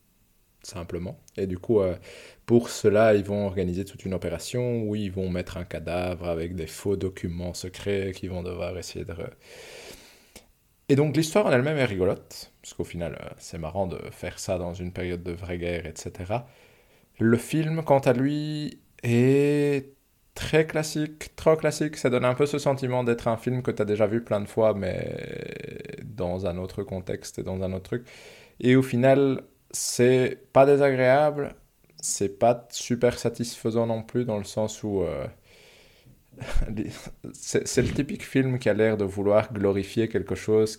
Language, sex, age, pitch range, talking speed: French, male, 20-39, 95-120 Hz, 175 wpm